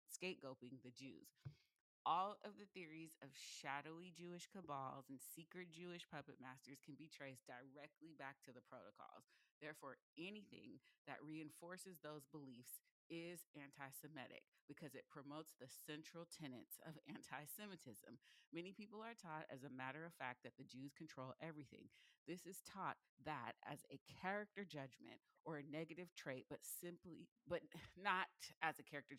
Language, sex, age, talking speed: English, female, 30-49, 150 wpm